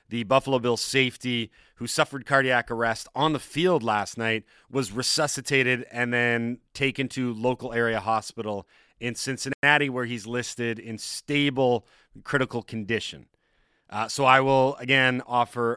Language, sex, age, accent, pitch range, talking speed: English, male, 30-49, American, 110-130 Hz, 140 wpm